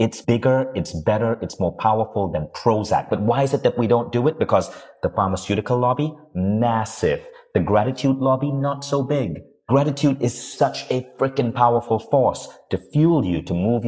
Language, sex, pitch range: English, male, 100-140 Hz